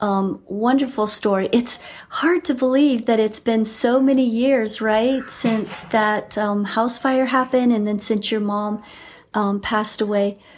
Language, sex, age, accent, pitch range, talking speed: English, female, 40-59, American, 210-260 Hz, 160 wpm